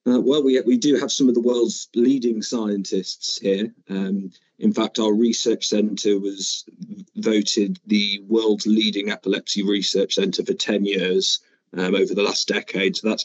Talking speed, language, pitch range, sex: 170 wpm, English, 100-115 Hz, male